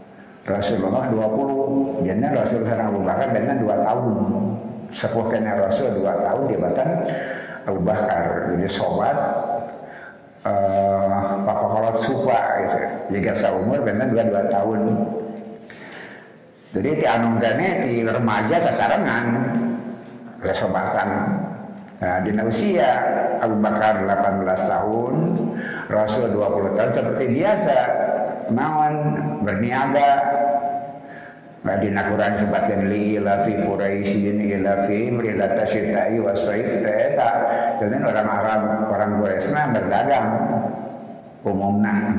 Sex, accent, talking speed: male, native, 80 wpm